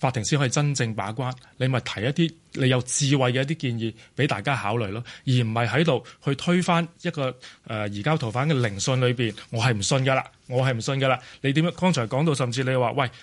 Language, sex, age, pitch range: Chinese, male, 20-39, 115-145 Hz